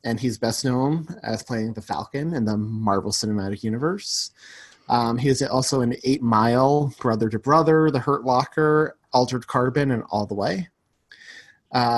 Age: 30-49